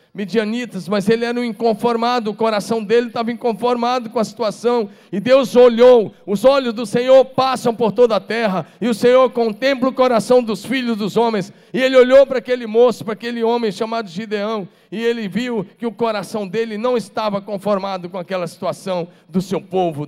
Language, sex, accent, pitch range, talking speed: Portuguese, male, Brazilian, 210-250 Hz, 190 wpm